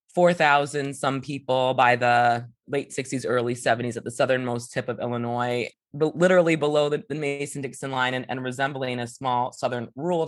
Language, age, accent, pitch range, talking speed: English, 20-39, American, 130-160 Hz, 160 wpm